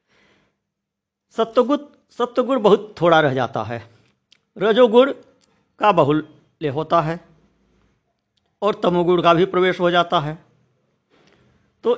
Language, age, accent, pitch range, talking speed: Hindi, 50-69, native, 150-210 Hz, 105 wpm